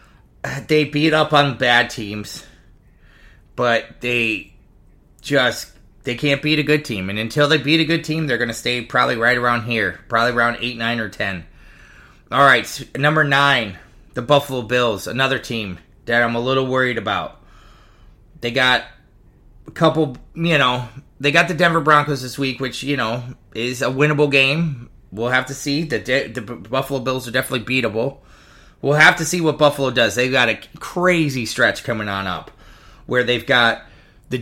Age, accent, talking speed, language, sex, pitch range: 30-49, American, 175 wpm, English, male, 115-140 Hz